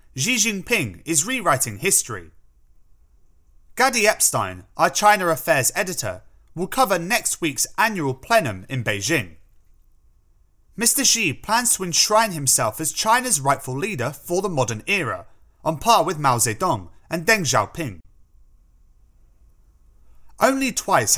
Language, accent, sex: English, British, male